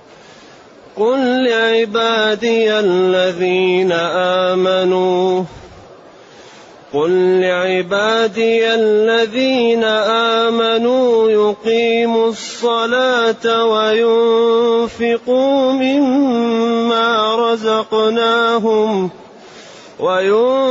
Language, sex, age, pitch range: Arabic, male, 30-49, 190-235 Hz